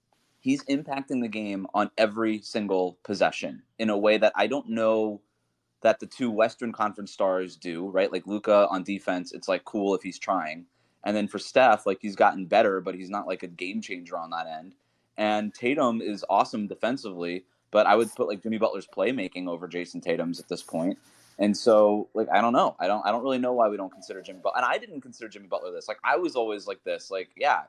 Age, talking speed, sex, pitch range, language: 20-39, 220 wpm, male, 95-125 Hz, English